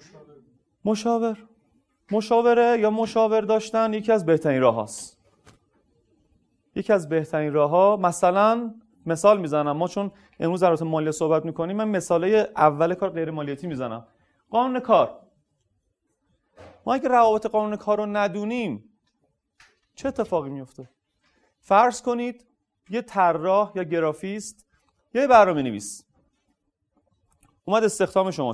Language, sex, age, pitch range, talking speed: Persian, male, 30-49, 155-220 Hz, 120 wpm